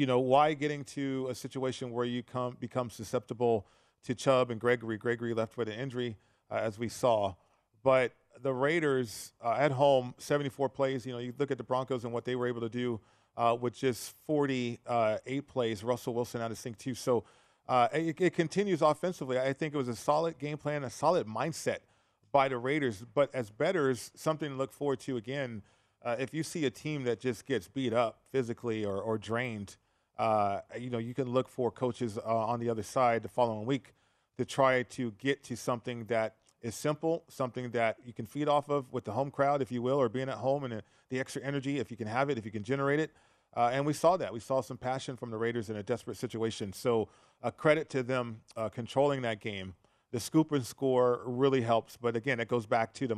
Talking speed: 225 wpm